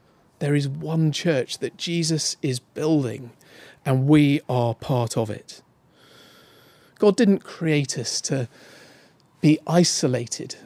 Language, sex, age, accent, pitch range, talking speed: English, male, 40-59, British, 145-185 Hz, 120 wpm